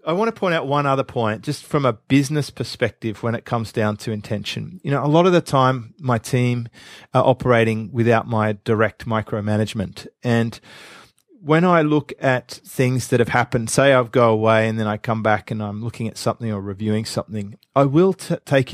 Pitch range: 110-140 Hz